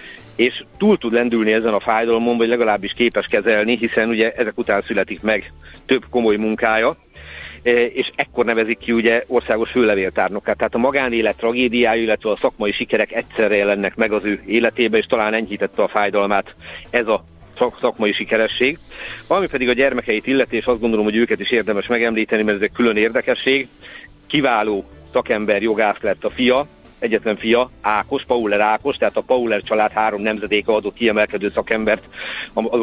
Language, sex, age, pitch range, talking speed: Hungarian, male, 50-69, 105-120 Hz, 165 wpm